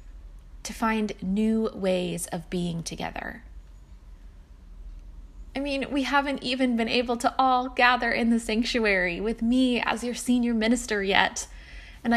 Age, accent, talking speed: 20-39, American, 140 wpm